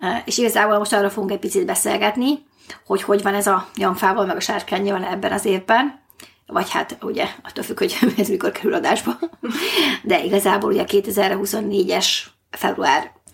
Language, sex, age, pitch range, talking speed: Hungarian, female, 30-49, 195-230 Hz, 160 wpm